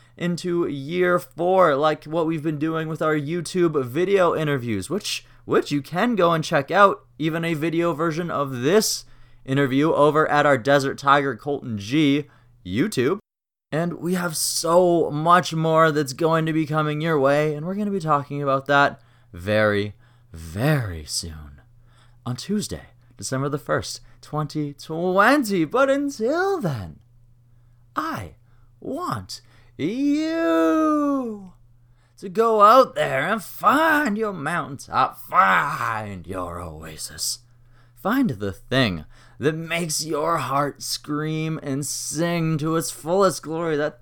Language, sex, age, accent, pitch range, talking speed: English, male, 20-39, American, 120-170 Hz, 135 wpm